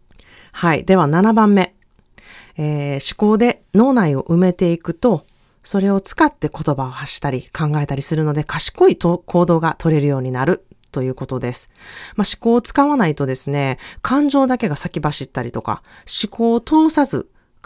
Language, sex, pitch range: Japanese, female, 145-225 Hz